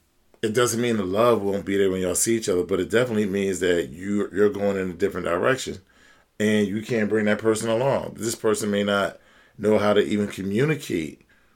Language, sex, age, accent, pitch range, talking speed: English, male, 40-59, American, 95-110 Hz, 210 wpm